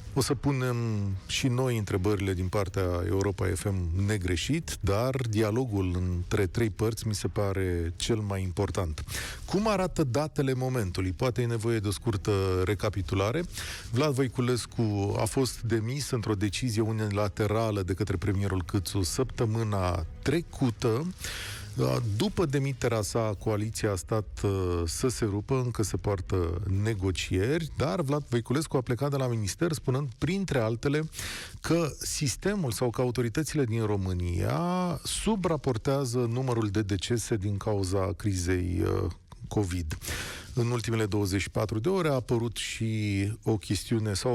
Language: Romanian